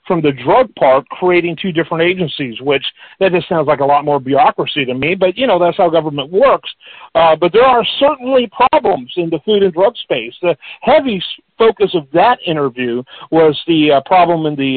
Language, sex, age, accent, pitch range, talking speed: English, male, 50-69, American, 150-190 Hz, 205 wpm